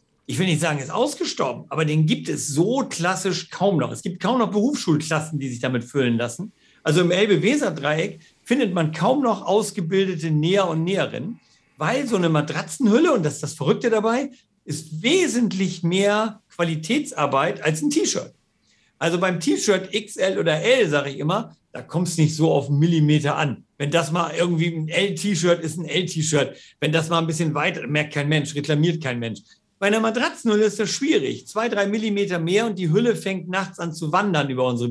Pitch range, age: 150-200 Hz, 50-69